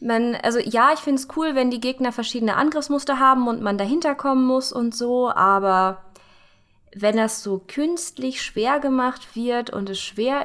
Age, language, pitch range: 20-39, German, 195-245 Hz